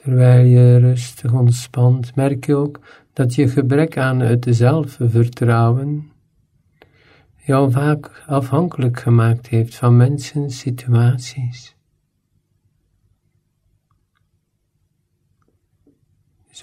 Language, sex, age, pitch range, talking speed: Dutch, male, 50-69, 115-145 Hz, 80 wpm